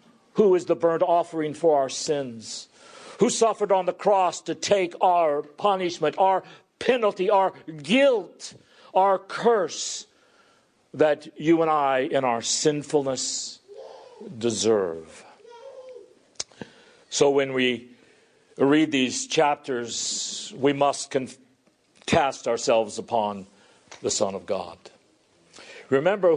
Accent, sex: American, male